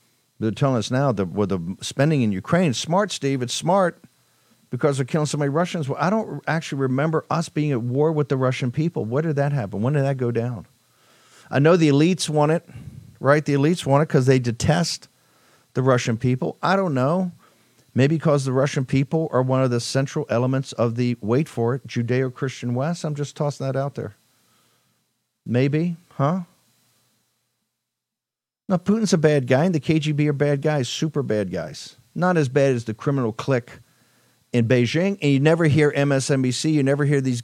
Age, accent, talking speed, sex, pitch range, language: 50-69, American, 195 wpm, male, 125-150 Hz, English